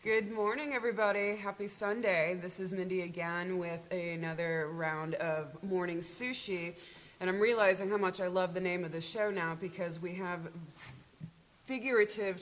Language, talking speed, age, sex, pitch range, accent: English, 155 wpm, 30-49, female, 150-200 Hz, American